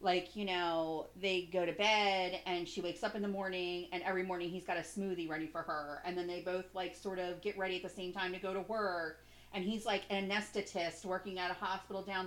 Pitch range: 180-230 Hz